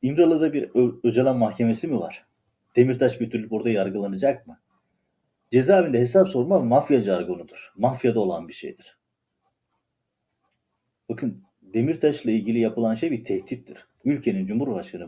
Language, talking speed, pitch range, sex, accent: Turkish, 125 wpm, 115-145 Hz, male, native